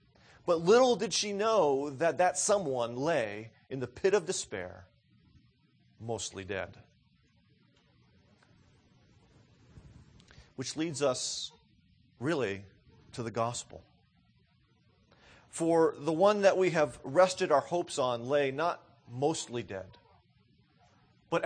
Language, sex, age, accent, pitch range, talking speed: English, male, 40-59, American, 120-180 Hz, 105 wpm